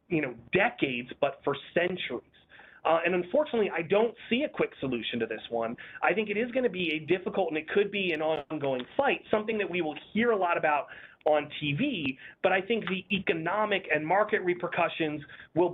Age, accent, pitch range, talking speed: 30-49, American, 150-190 Hz, 200 wpm